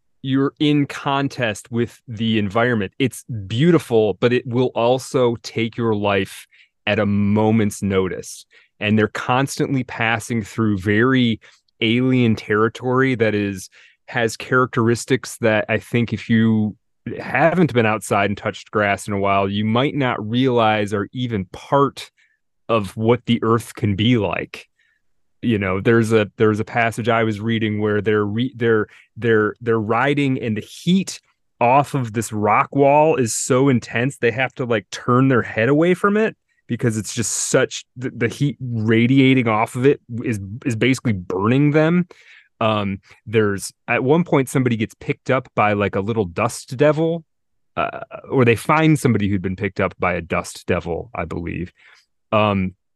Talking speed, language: 165 wpm, English